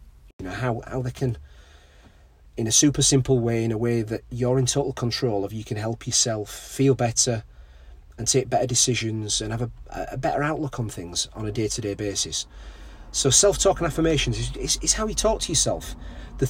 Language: English